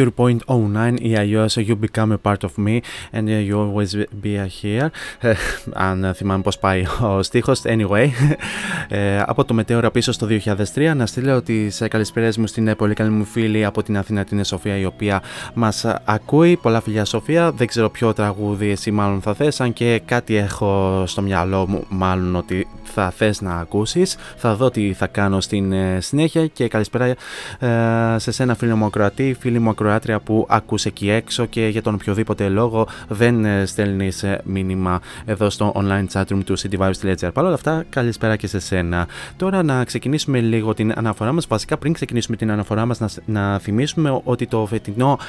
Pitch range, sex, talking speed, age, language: 100-120 Hz, male, 175 wpm, 20-39, Greek